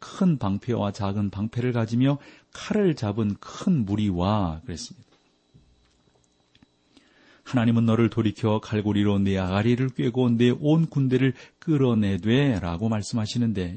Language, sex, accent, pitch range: Korean, male, native, 95-125 Hz